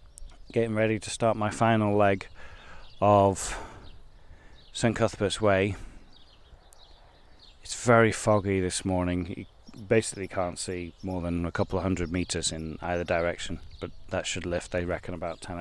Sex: male